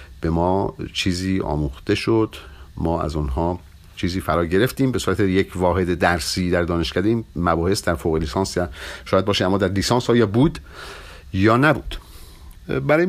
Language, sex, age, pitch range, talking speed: Persian, male, 50-69, 80-110 Hz, 150 wpm